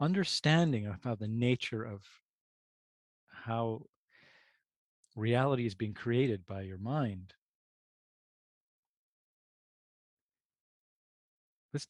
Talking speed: 75 wpm